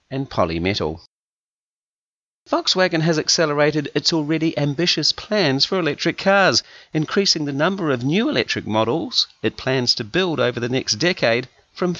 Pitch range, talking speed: 115-170 Hz, 140 wpm